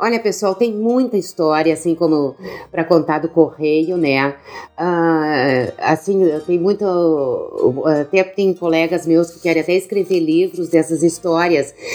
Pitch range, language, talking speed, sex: 155-185 Hz, Portuguese, 145 wpm, female